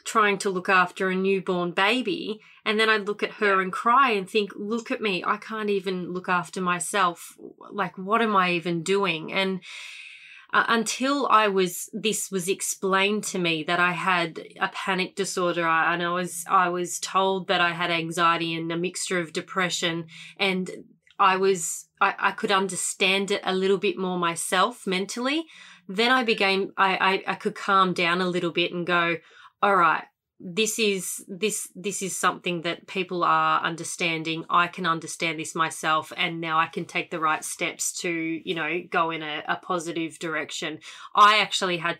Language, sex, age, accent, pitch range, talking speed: English, female, 30-49, Australian, 170-195 Hz, 185 wpm